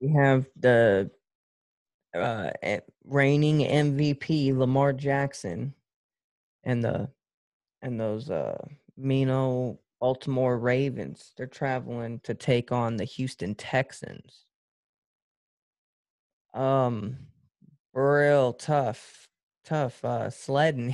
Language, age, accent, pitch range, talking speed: English, 20-39, American, 120-135 Hz, 85 wpm